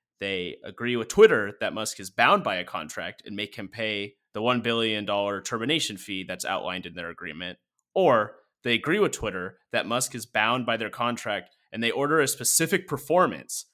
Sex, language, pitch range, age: male, English, 100-130 Hz, 30-49